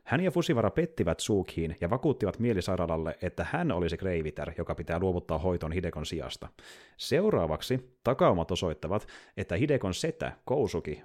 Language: Finnish